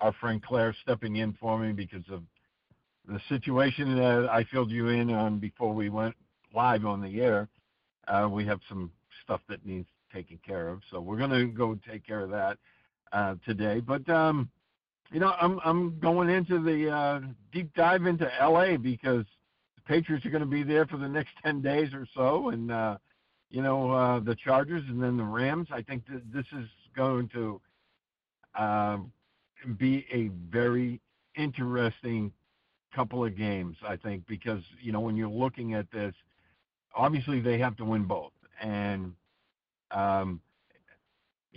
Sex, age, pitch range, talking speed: male, 60-79, 105-135 Hz, 175 wpm